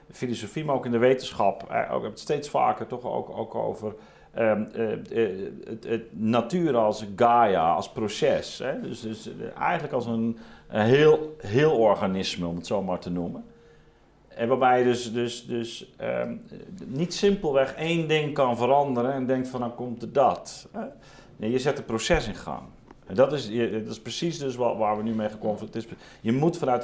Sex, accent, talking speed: male, Dutch, 190 wpm